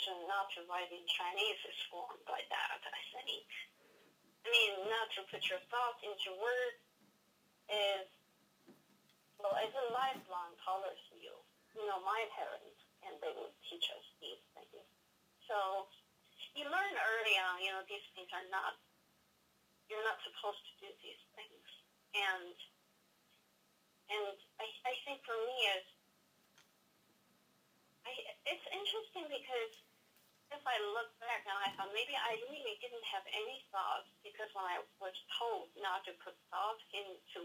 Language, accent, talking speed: English, American, 150 wpm